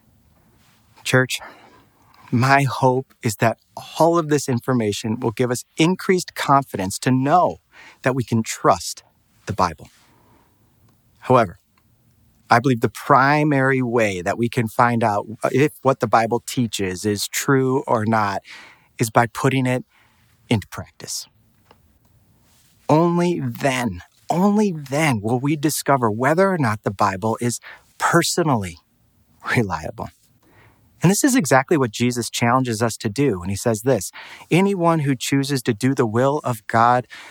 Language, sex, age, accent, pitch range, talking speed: English, male, 40-59, American, 110-135 Hz, 140 wpm